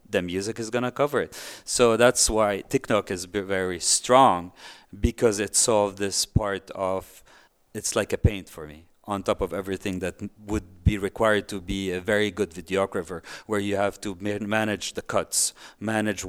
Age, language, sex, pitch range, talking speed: 40-59, English, male, 95-115 Hz, 175 wpm